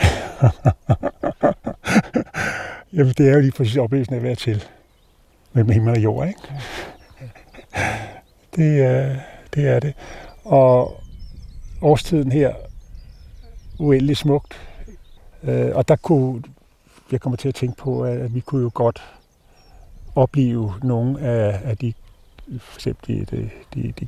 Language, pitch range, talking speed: Danish, 120-145 Hz, 110 wpm